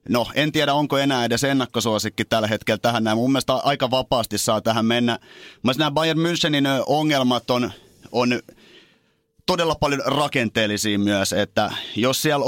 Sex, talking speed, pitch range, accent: male, 150 wpm, 110-135 Hz, native